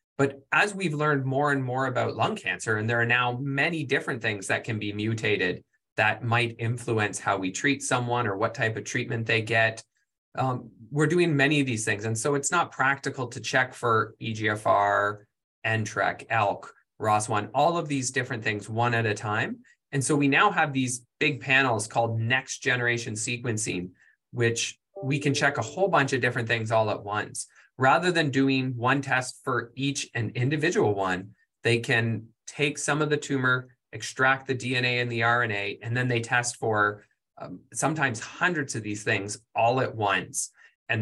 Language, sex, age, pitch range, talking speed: English, male, 20-39, 115-135 Hz, 185 wpm